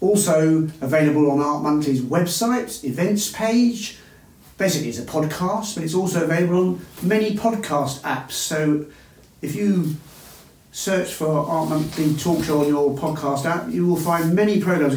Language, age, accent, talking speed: English, 40-59, British, 150 wpm